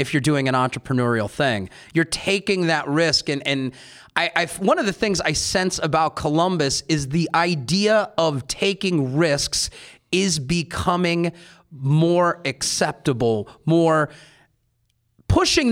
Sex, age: male, 30-49